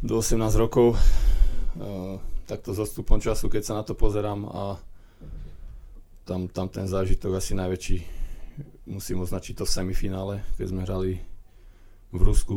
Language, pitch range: Slovak, 90-100 Hz